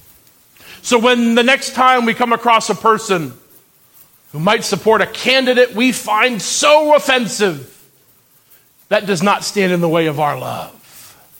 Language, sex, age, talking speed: English, male, 40-59, 155 wpm